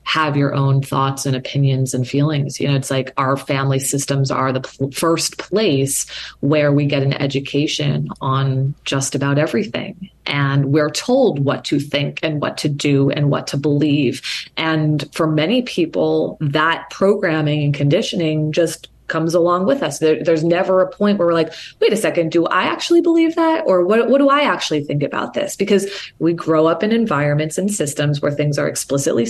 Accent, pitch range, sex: American, 145-190 Hz, female